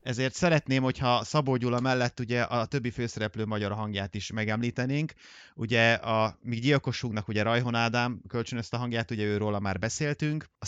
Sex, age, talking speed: male, 30-49, 165 wpm